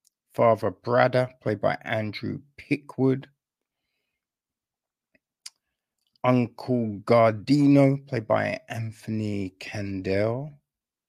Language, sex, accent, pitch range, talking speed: English, male, British, 105-140 Hz, 65 wpm